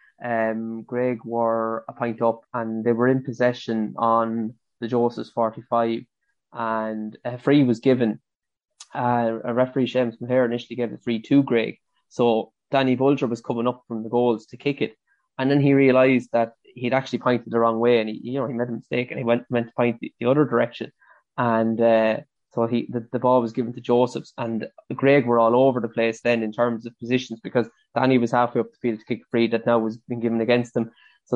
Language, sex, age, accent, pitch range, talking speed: English, male, 20-39, Irish, 115-125 Hz, 215 wpm